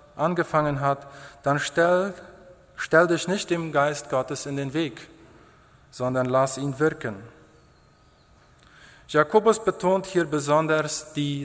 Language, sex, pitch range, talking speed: German, male, 140-170 Hz, 115 wpm